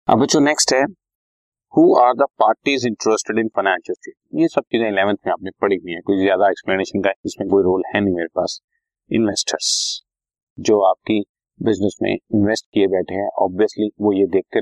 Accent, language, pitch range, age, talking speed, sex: native, Hindi, 100-120 Hz, 30-49, 175 wpm, male